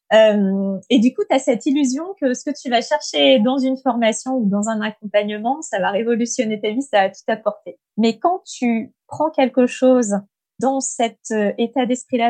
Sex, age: female, 20-39